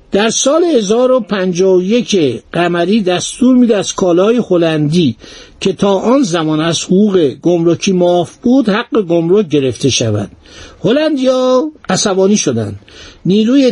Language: Persian